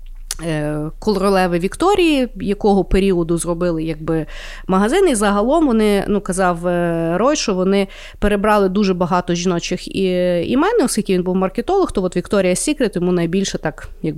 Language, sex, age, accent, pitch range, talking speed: Ukrainian, female, 30-49, native, 180-245 Hz, 135 wpm